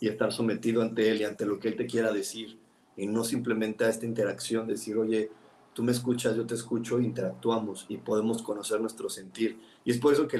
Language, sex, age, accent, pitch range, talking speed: Spanish, male, 40-59, Mexican, 110-120 Hz, 220 wpm